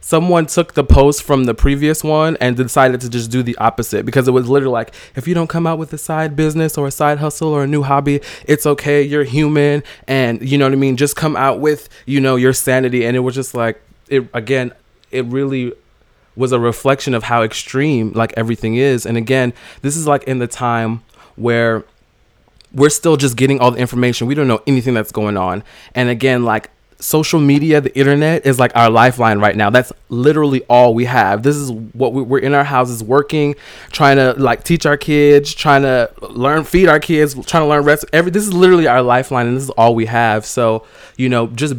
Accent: American